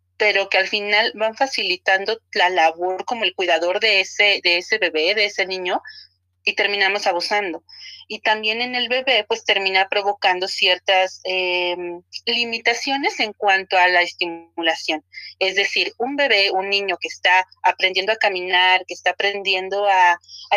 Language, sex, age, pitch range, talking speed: Spanish, female, 30-49, 175-210 Hz, 160 wpm